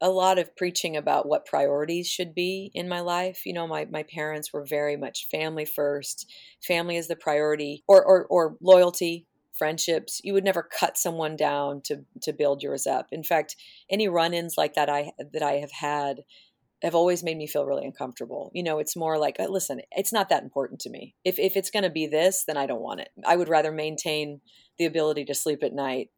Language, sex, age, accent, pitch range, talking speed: English, female, 40-59, American, 145-175 Hz, 215 wpm